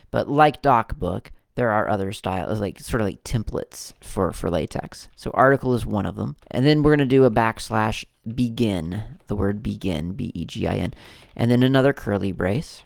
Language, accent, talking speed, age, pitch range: English, American, 180 wpm, 30-49, 100-130 Hz